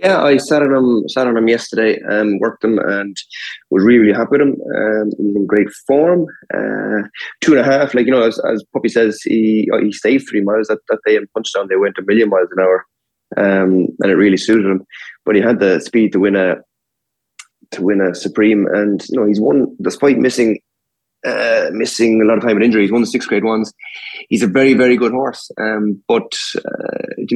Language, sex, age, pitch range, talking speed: English, male, 20-39, 100-120 Hz, 225 wpm